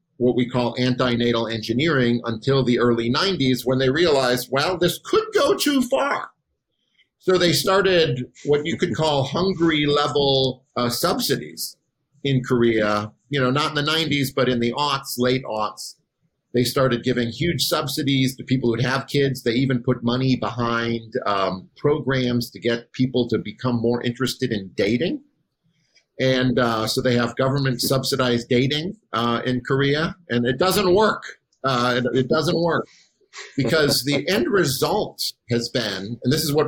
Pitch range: 120-145 Hz